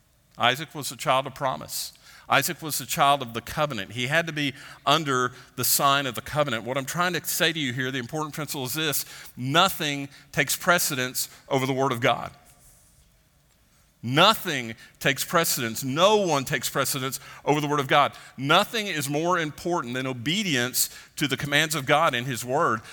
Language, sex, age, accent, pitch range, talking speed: English, male, 50-69, American, 120-150 Hz, 185 wpm